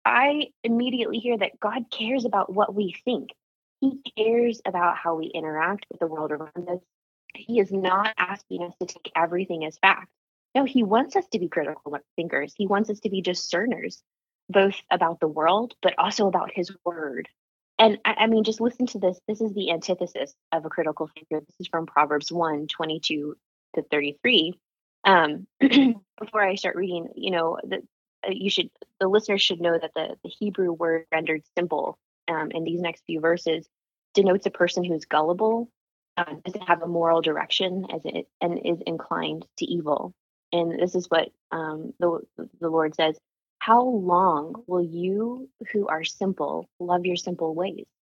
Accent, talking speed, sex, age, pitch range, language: American, 180 wpm, female, 20-39, 165-215 Hz, English